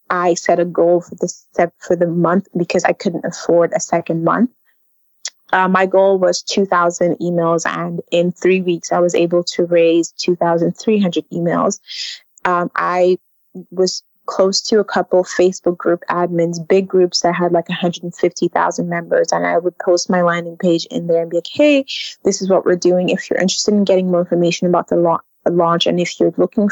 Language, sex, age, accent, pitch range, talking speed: English, female, 20-39, American, 170-190 Hz, 180 wpm